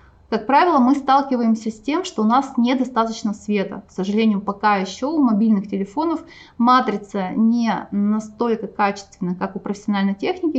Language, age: Russian, 20-39